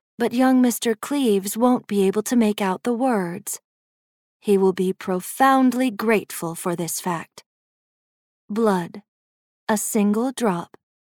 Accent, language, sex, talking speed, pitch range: American, English, female, 130 wpm, 190-240 Hz